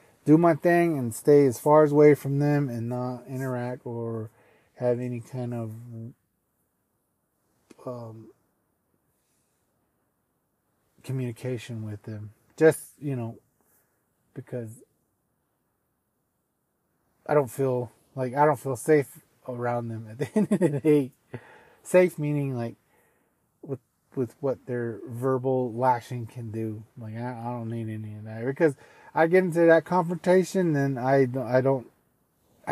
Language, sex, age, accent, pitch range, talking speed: English, male, 30-49, American, 120-145 Hz, 130 wpm